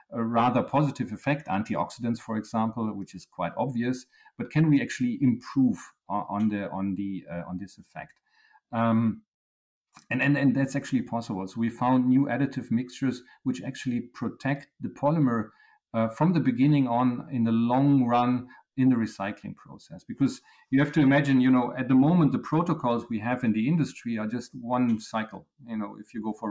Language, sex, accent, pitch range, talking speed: English, male, German, 110-145 Hz, 185 wpm